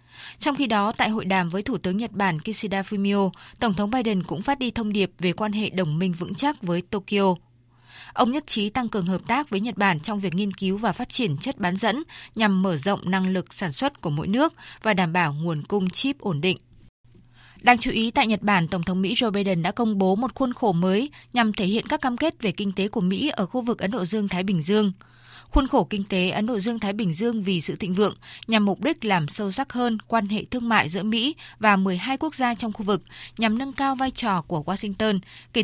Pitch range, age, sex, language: 185-230 Hz, 20-39, female, Vietnamese